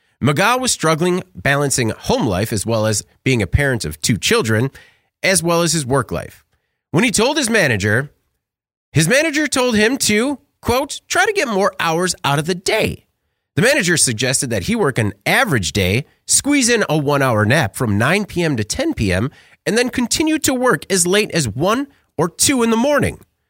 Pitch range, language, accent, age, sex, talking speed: 120-195 Hz, English, American, 30-49, male, 190 wpm